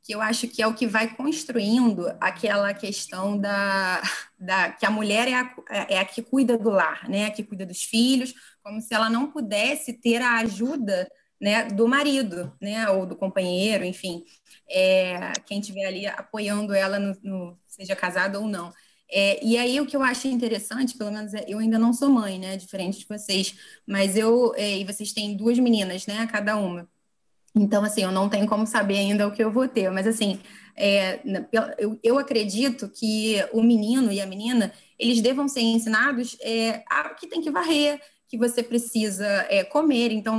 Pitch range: 200-240 Hz